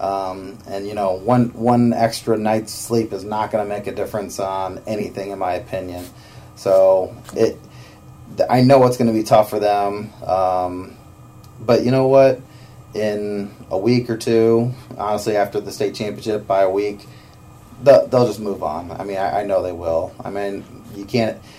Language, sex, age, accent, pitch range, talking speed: English, male, 30-49, American, 95-115 Hz, 180 wpm